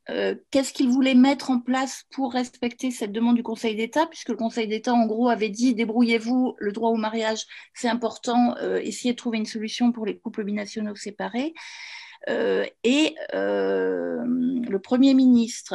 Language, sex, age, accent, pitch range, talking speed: French, female, 30-49, French, 225-265 Hz, 175 wpm